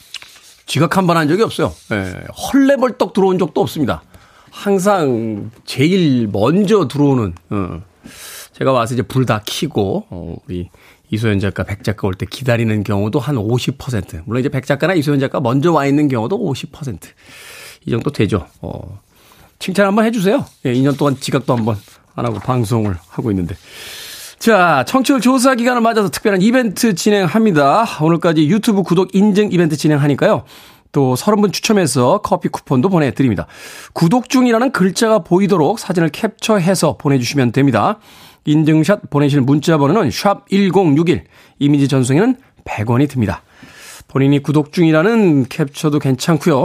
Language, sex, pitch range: Korean, male, 120-195 Hz